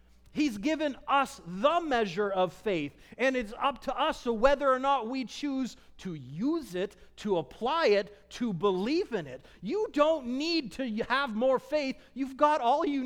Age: 40-59